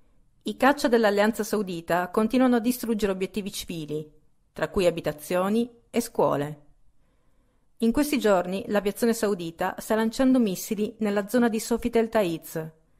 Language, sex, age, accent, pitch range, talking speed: Italian, female, 40-59, native, 155-215 Hz, 125 wpm